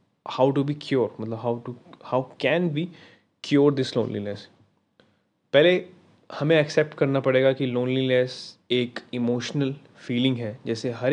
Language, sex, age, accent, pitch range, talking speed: Hindi, male, 20-39, native, 115-140 Hz, 140 wpm